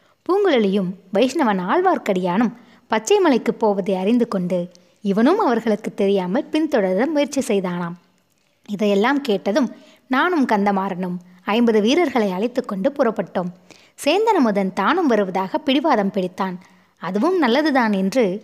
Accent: native